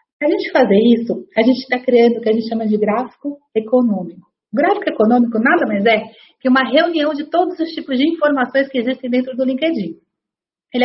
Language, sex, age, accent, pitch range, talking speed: Portuguese, female, 30-49, Brazilian, 225-290 Hz, 205 wpm